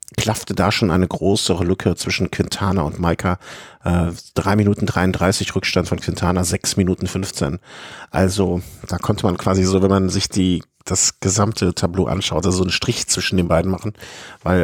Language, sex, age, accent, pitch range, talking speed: German, male, 50-69, German, 90-105 Hz, 170 wpm